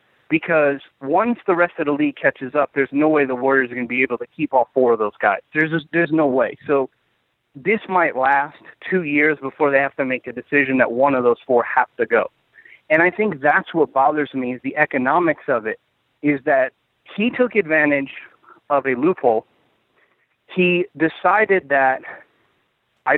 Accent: American